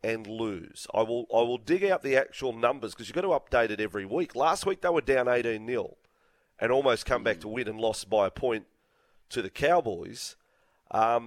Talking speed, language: 220 wpm, English